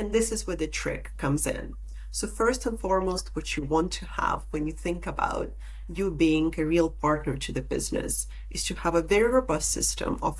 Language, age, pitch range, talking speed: English, 30-49, 155-190 Hz, 215 wpm